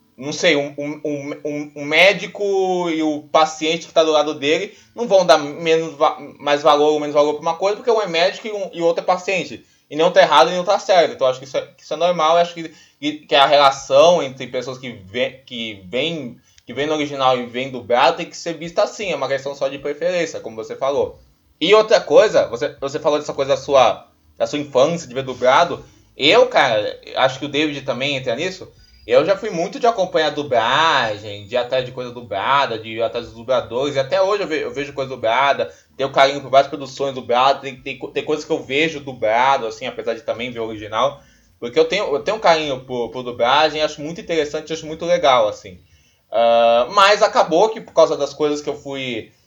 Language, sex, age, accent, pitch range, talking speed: Portuguese, male, 20-39, Brazilian, 130-170 Hz, 225 wpm